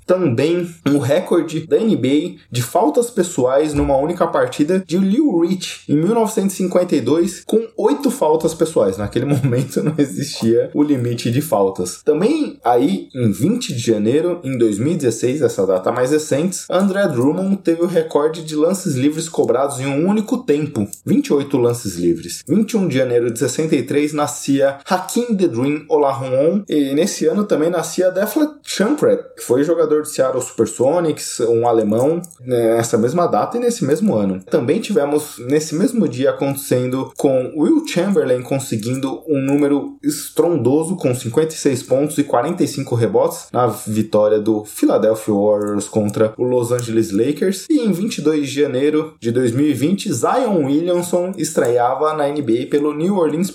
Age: 20-39